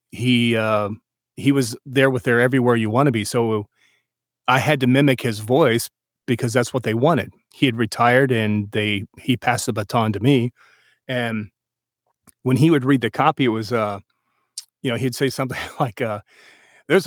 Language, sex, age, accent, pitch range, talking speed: English, male, 40-59, American, 120-155 Hz, 185 wpm